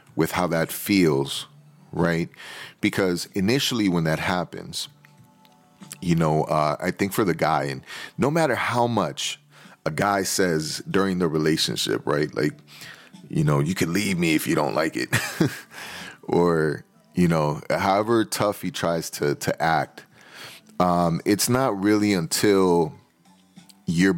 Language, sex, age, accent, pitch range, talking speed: English, male, 30-49, American, 80-105 Hz, 145 wpm